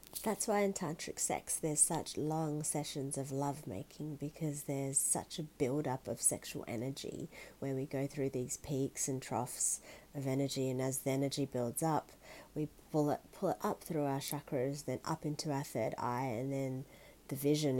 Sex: female